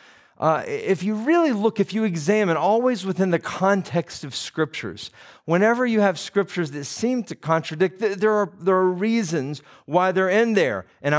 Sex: male